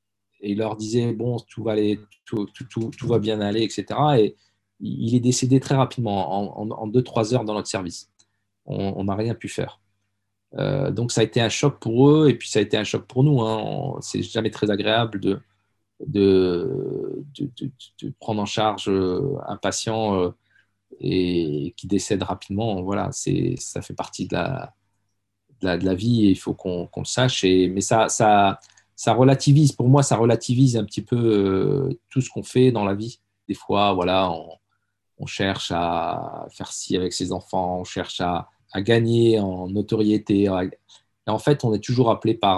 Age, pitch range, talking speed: 40-59, 100-125 Hz, 200 wpm